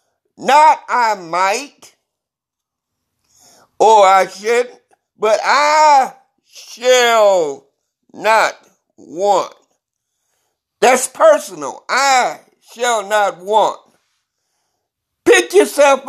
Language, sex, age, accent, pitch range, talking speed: English, male, 60-79, American, 220-295 Hz, 70 wpm